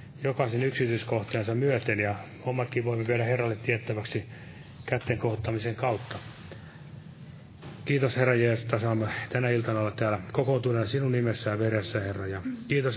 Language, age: Finnish, 30-49